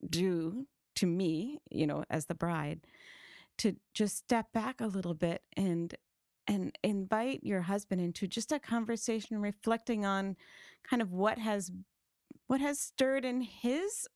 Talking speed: 150 wpm